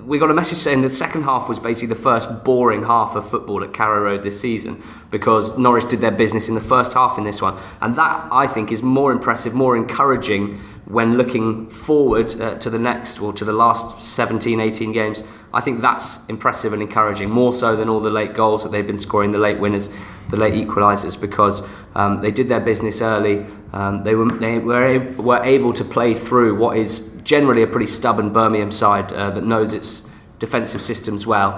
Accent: British